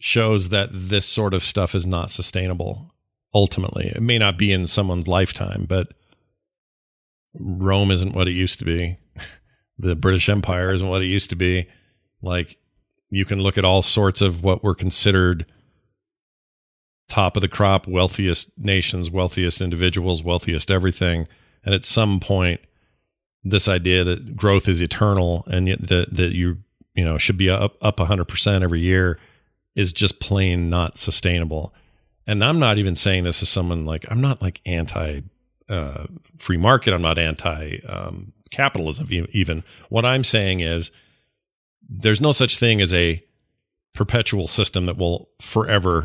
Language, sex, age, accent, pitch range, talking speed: English, male, 40-59, American, 90-105 Hz, 155 wpm